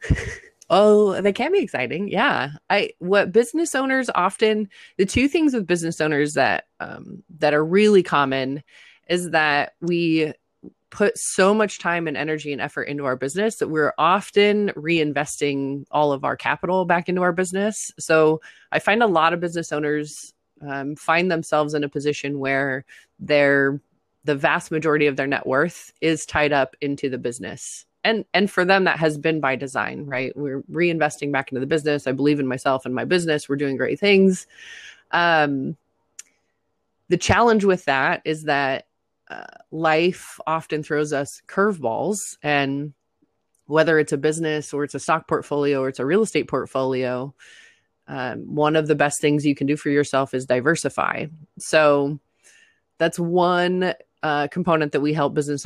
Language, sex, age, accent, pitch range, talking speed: English, female, 20-39, American, 145-180 Hz, 170 wpm